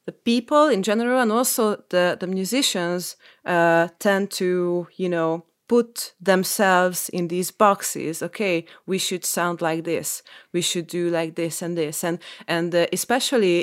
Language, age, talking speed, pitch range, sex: Dutch, 30-49, 160 wpm, 165-190 Hz, female